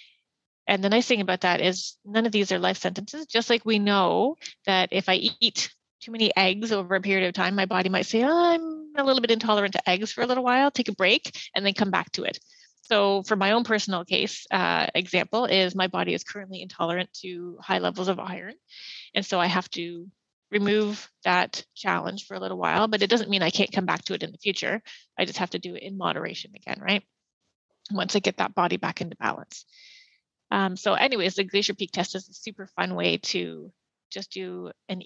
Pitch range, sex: 185-215 Hz, female